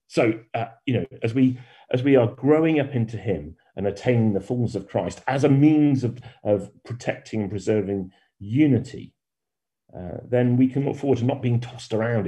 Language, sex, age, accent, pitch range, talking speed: English, male, 40-59, British, 95-125 Hz, 190 wpm